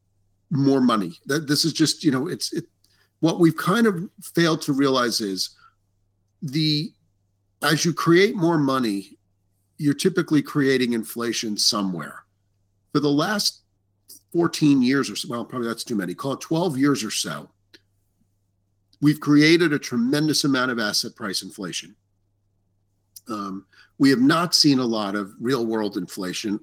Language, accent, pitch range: English, American, 100-145 Hz